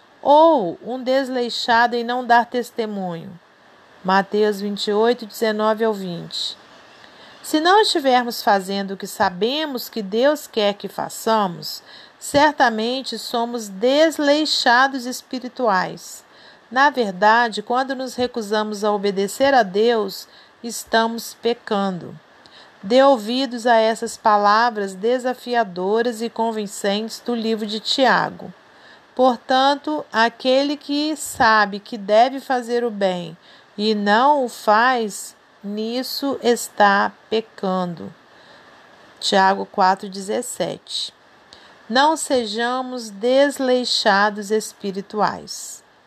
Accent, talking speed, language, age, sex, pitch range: Brazilian, 95 wpm, Portuguese, 40-59, female, 210-250 Hz